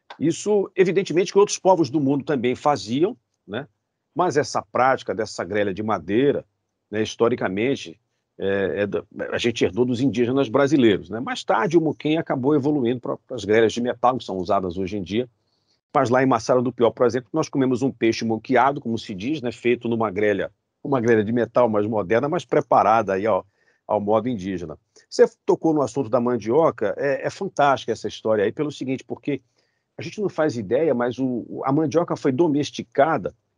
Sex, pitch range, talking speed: male, 115-150 Hz, 190 wpm